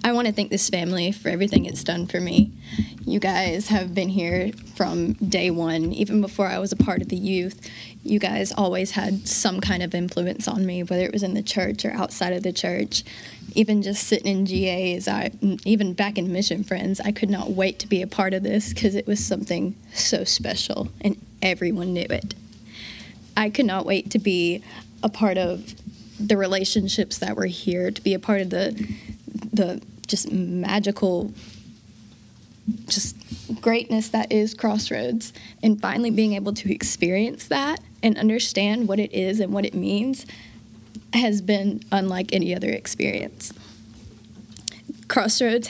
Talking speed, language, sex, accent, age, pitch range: 175 wpm, English, female, American, 10-29, 185-215 Hz